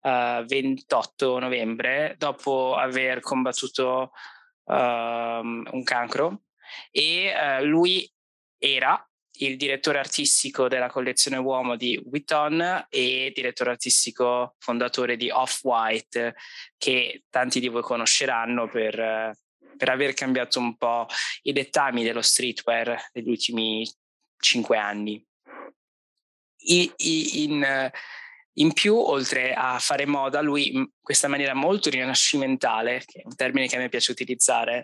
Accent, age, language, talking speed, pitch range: native, 20-39, Italian, 125 wpm, 120-145 Hz